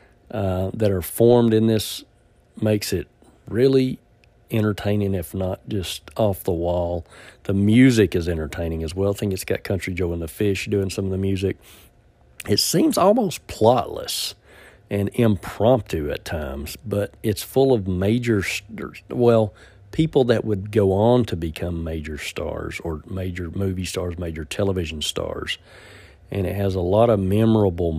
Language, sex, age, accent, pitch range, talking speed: English, male, 50-69, American, 90-110 Hz, 155 wpm